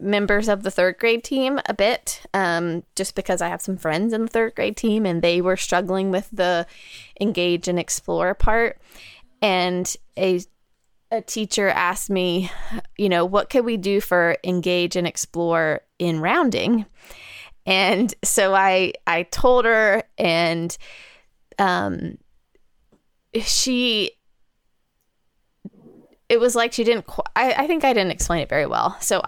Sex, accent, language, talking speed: female, American, English, 150 wpm